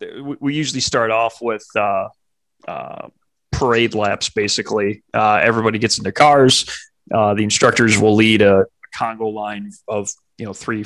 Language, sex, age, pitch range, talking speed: English, male, 30-49, 105-130 Hz, 155 wpm